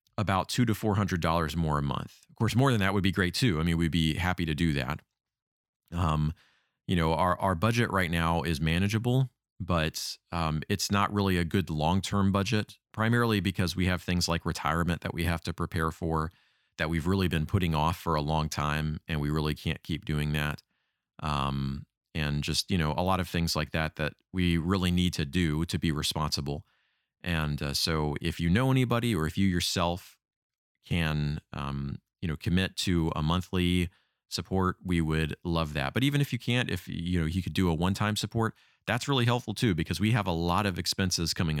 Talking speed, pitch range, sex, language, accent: 210 wpm, 80-100 Hz, male, English, American